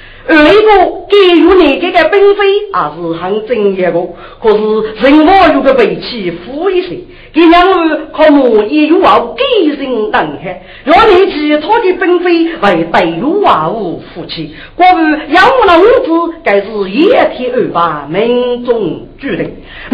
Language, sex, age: Chinese, female, 40-59